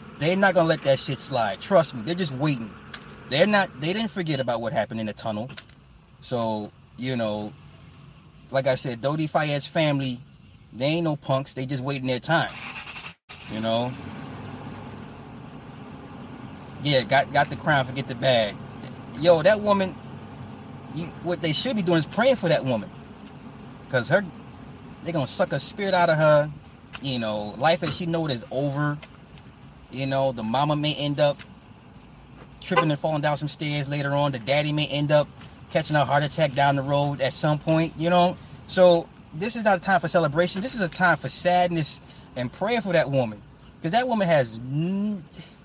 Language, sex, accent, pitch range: English, male, American, 130-165 Hz